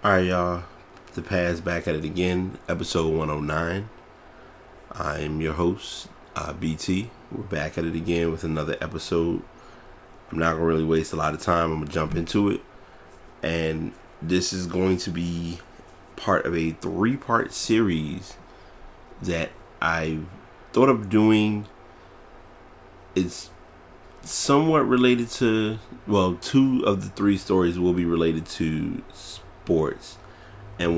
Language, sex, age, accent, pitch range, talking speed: English, male, 30-49, American, 80-100 Hz, 140 wpm